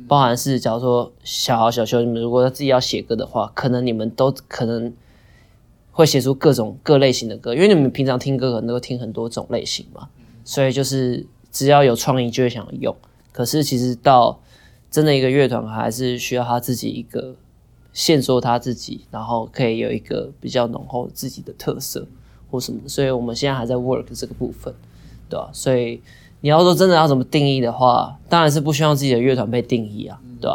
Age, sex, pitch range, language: 20-39, male, 120-140 Hz, Chinese